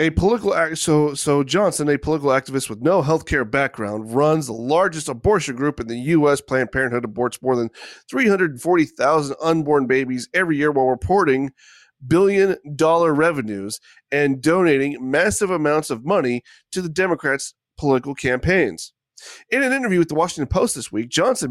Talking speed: 160 wpm